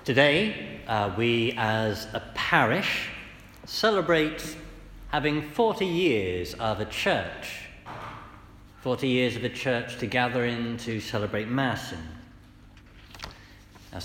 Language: English